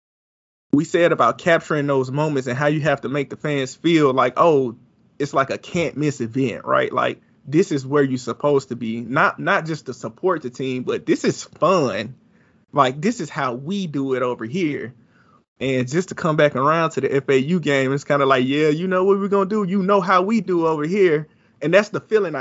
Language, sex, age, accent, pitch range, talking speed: English, male, 20-39, American, 140-190 Hz, 230 wpm